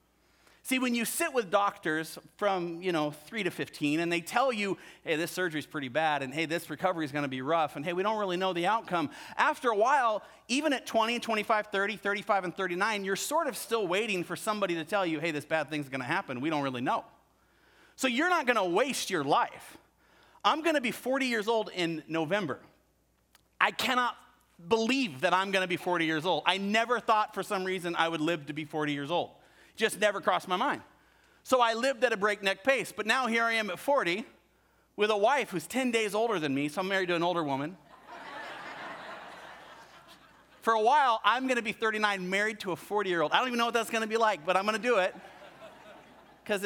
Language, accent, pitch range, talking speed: English, American, 170-225 Hz, 220 wpm